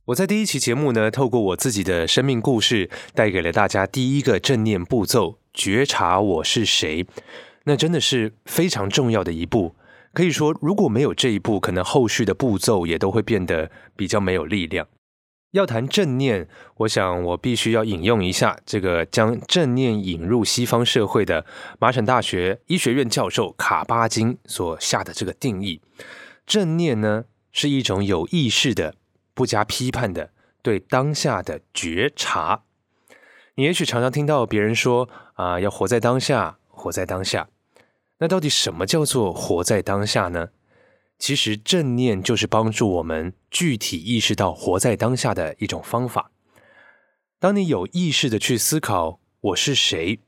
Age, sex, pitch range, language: 20-39, male, 100-140 Hz, Chinese